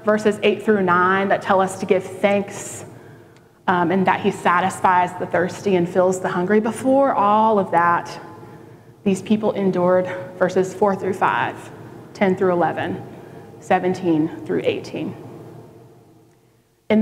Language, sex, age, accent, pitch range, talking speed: English, female, 20-39, American, 165-205 Hz, 140 wpm